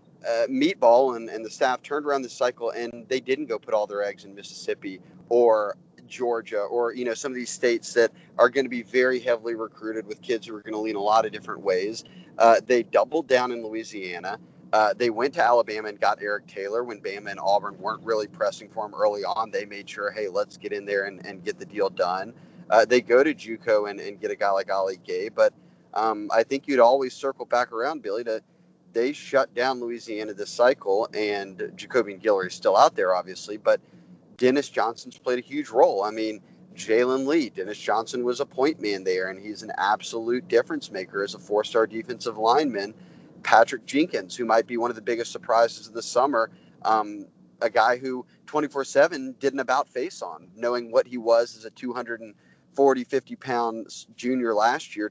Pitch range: 110-135 Hz